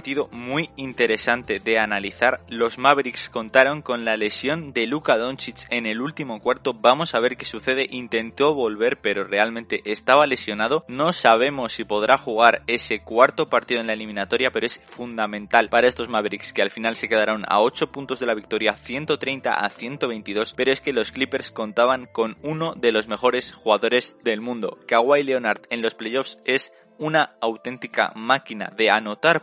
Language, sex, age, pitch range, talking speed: Spanish, male, 20-39, 115-140 Hz, 170 wpm